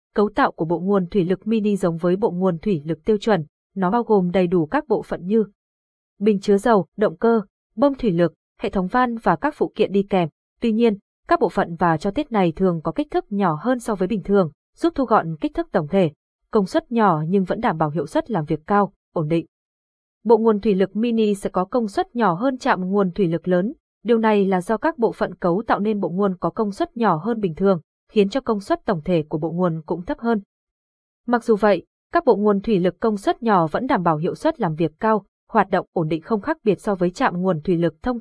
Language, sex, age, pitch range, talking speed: Vietnamese, female, 20-39, 180-225 Hz, 255 wpm